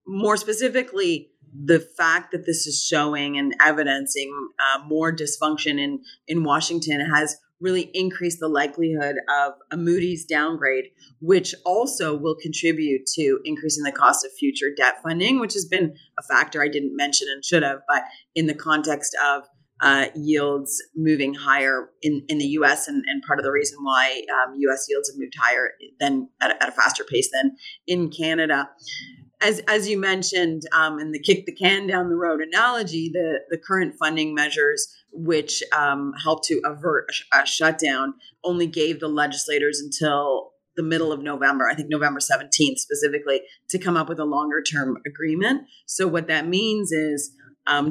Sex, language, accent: female, English, American